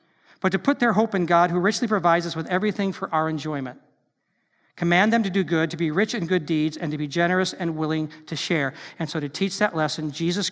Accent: American